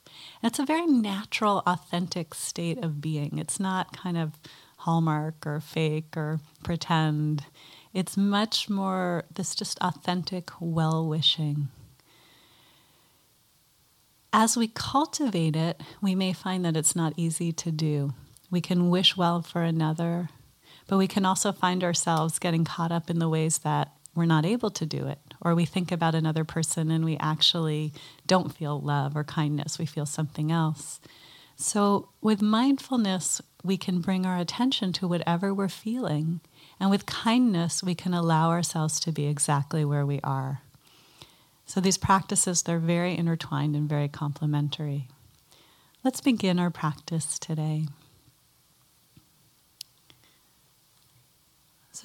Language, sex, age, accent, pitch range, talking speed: English, female, 30-49, American, 150-185 Hz, 140 wpm